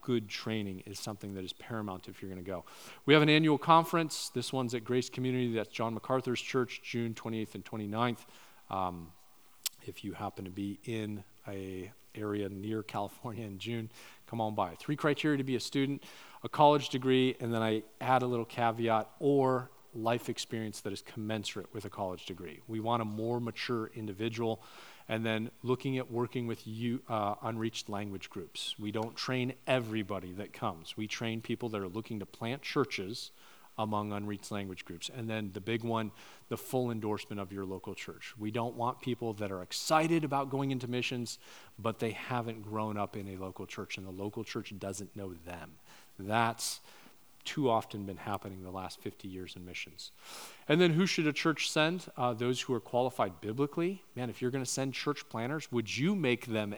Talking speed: 190 wpm